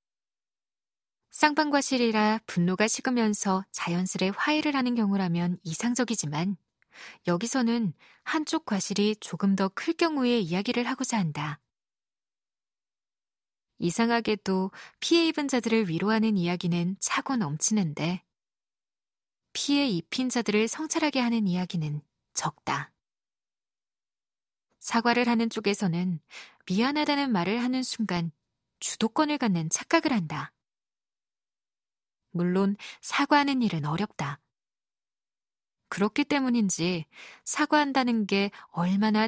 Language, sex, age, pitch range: Korean, female, 20-39, 180-255 Hz